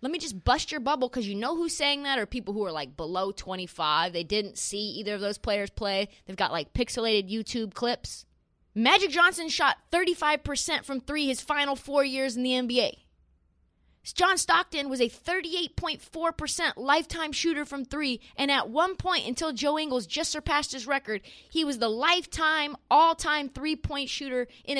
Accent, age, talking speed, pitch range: American, 20-39, 180 wpm, 215-305 Hz